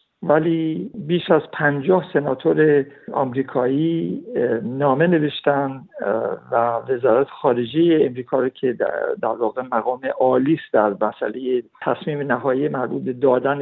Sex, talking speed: male, 110 wpm